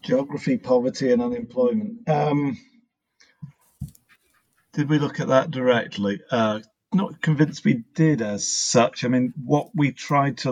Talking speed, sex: 135 wpm, male